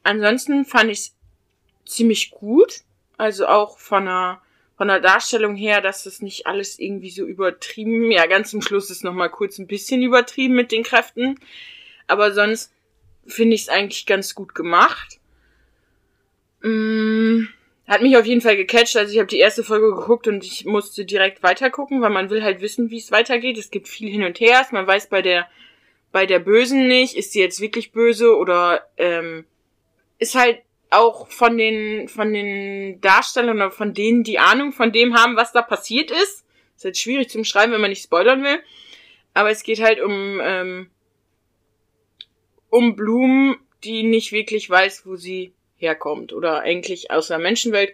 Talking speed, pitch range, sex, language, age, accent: 180 wpm, 185-230 Hz, female, German, 20-39, German